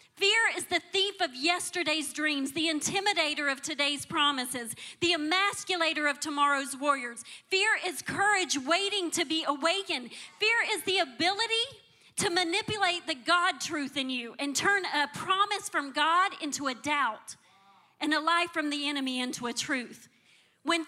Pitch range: 290-380 Hz